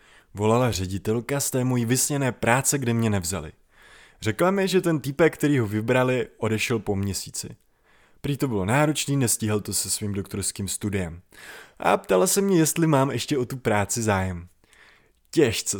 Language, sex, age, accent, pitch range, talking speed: Czech, male, 20-39, native, 100-135 Hz, 165 wpm